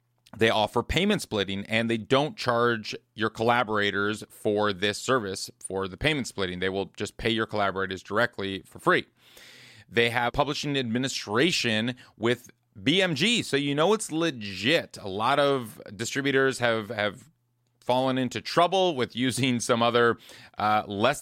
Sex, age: male, 30-49